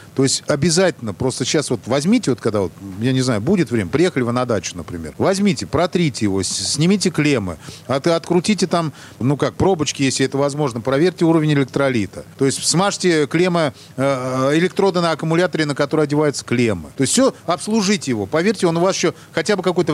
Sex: male